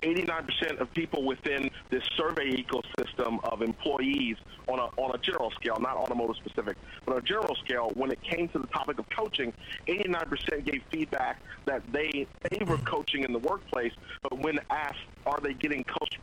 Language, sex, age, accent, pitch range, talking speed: English, male, 40-59, American, 120-155 Hz, 190 wpm